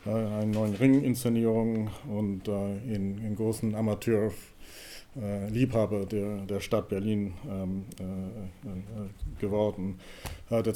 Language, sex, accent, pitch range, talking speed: English, male, German, 100-120 Hz, 65 wpm